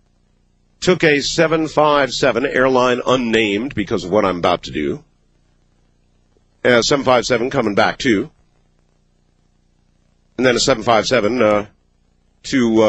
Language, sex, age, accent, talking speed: English, male, 50-69, American, 100 wpm